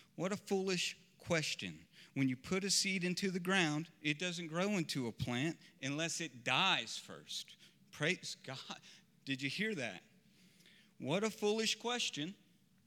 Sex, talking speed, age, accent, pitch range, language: male, 150 wpm, 40-59, American, 130-180 Hz, English